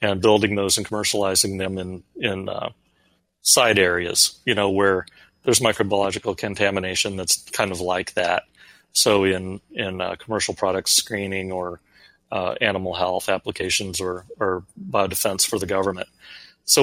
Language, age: English, 30-49